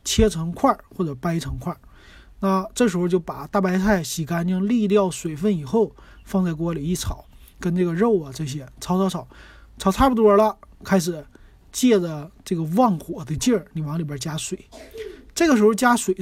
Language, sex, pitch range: Chinese, male, 160-205 Hz